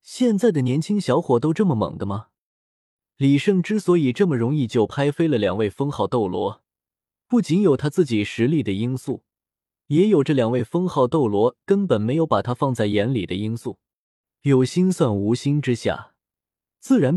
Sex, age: male, 20-39